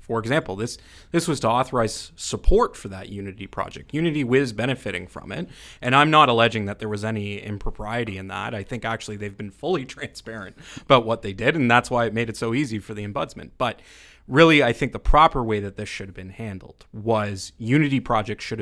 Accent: American